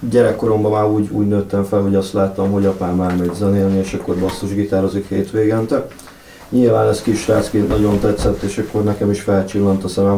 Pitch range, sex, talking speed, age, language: 95-105 Hz, male, 185 wpm, 30-49, Hungarian